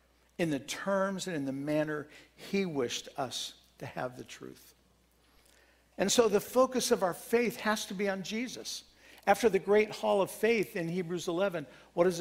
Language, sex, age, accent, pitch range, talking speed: English, male, 60-79, American, 135-190 Hz, 180 wpm